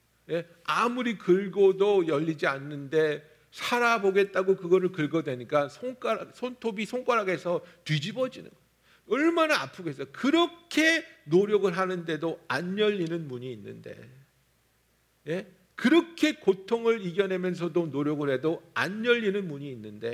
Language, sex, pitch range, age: Korean, male, 155-240 Hz, 50-69